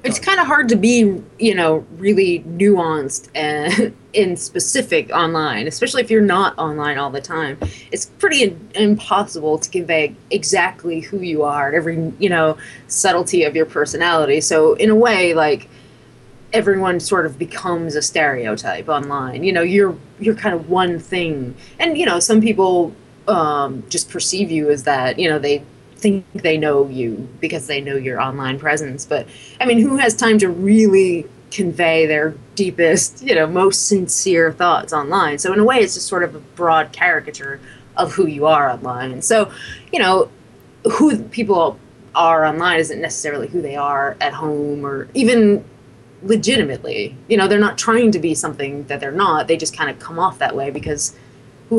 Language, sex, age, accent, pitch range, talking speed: English, female, 20-39, American, 145-200 Hz, 180 wpm